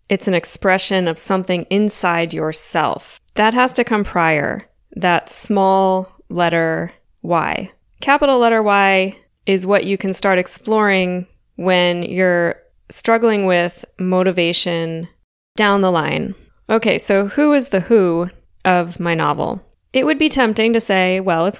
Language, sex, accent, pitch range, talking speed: English, female, American, 175-220 Hz, 140 wpm